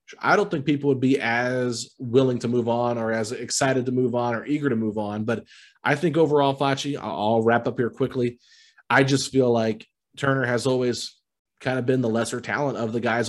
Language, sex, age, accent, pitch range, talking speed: English, male, 30-49, American, 115-140 Hz, 215 wpm